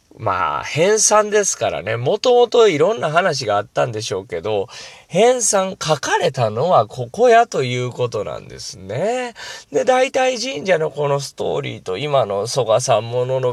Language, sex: Japanese, male